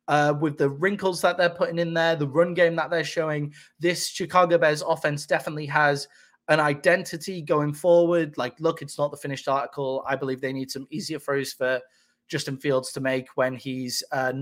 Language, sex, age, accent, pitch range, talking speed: English, male, 20-39, British, 135-170 Hz, 195 wpm